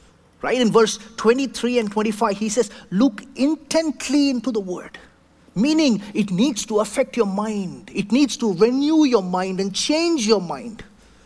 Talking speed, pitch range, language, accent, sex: 160 wpm, 220-275 Hz, English, Indian, male